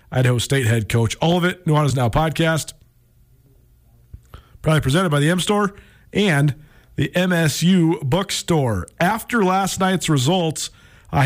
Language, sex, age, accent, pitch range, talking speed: English, male, 40-59, American, 125-165 Hz, 130 wpm